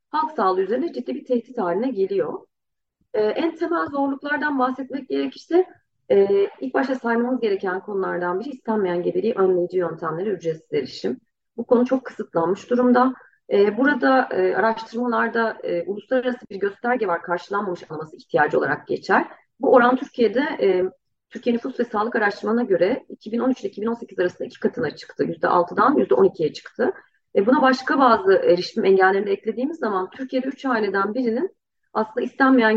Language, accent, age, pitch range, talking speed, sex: Turkish, native, 30-49, 195-260 Hz, 145 wpm, female